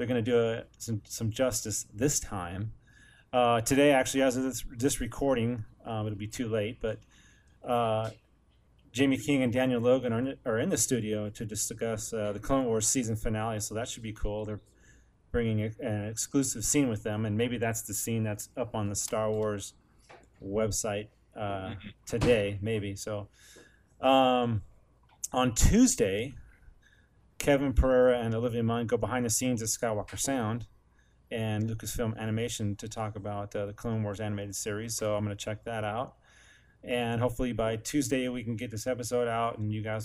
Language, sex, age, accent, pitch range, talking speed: English, male, 30-49, American, 105-125 Hz, 180 wpm